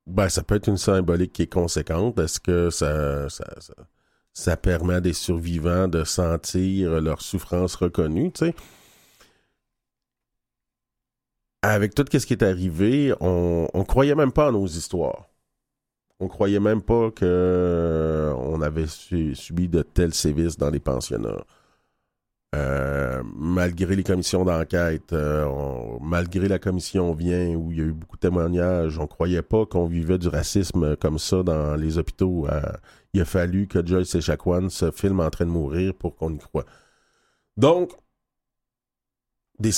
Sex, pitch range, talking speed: male, 80-95 Hz, 160 wpm